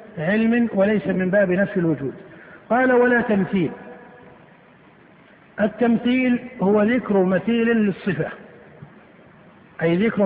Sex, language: male, Arabic